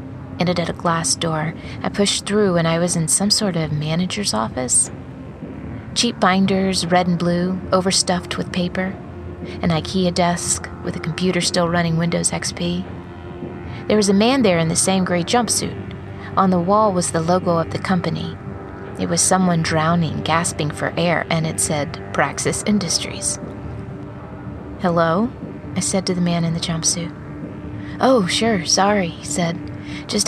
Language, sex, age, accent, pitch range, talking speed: English, female, 30-49, American, 130-195 Hz, 160 wpm